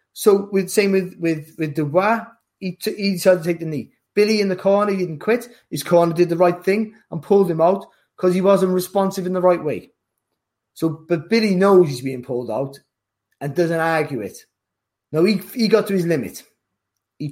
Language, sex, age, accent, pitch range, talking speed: English, male, 30-49, British, 145-175 Hz, 210 wpm